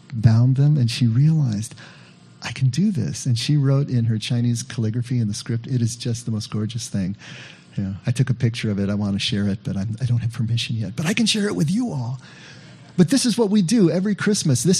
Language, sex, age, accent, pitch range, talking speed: English, male, 40-59, American, 120-150 Hz, 245 wpm